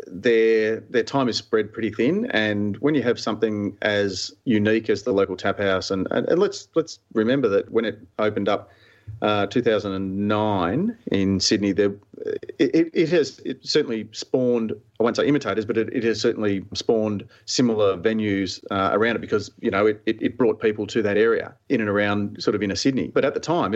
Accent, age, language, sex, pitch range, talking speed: Australian, 40-59, English, male, 100-125 Hz, 195 wpm